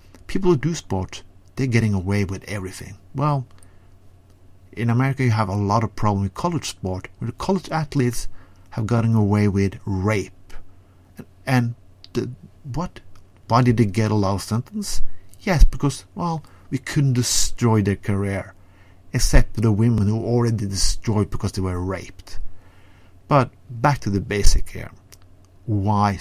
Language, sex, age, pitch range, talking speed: English, male, 50-69, 95-120 Hz, 155 wpm